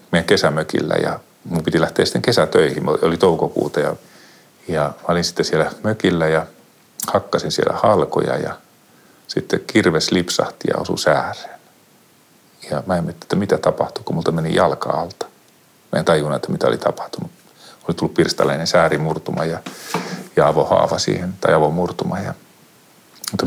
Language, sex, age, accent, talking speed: Finnish, male, 40-59, native, 145 wpm